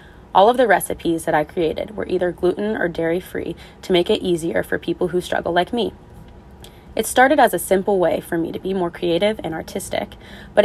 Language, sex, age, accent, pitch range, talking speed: English, female, 20-39, American, 165-205 Hz, 210 wpm